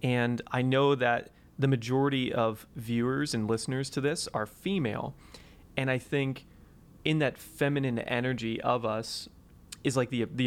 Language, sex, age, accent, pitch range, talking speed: English, male, 30-49, American, 115-135 Hz, 155 wpm